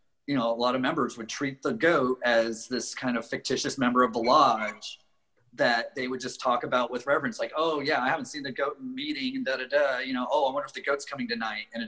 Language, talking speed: English, 265 wpm